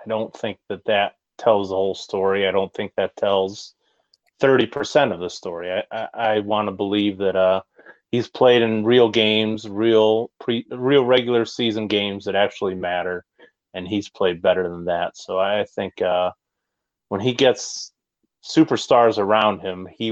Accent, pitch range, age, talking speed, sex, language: American, 100-120 Hz, 30-49, 170 wpm, male, English